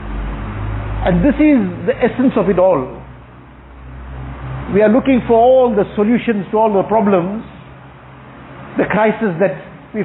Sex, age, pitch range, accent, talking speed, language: male, 50-69, 175-230 Hz, Indian, 135 wpm, English